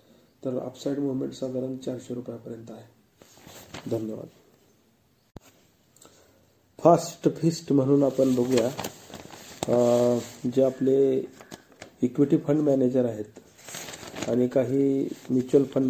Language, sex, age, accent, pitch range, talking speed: Marathi, male, 40-59, native, 125-140 Hz, 70 wpm